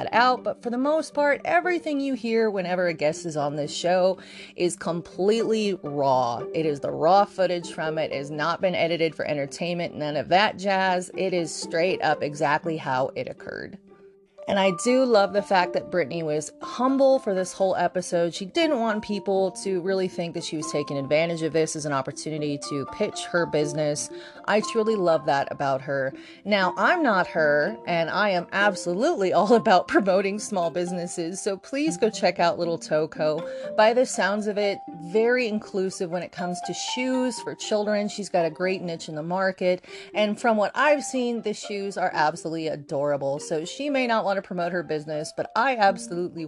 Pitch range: 165-215 Hz